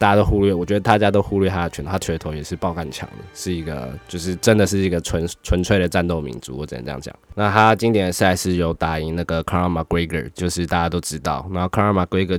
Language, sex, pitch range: Chinese, male, 80-95 Hz